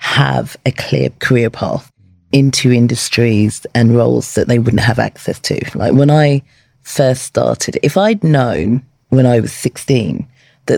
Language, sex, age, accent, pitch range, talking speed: English, female, 30-49, British, 125-150 Hz, 155 wpm